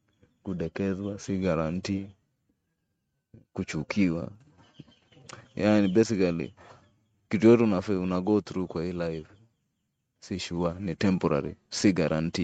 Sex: male